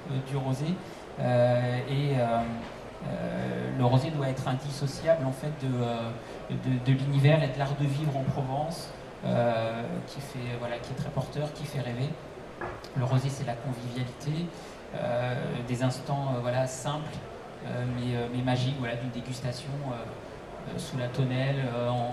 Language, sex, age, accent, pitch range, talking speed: French, male, 40-59, French, 125-145 Hz, 165 wpm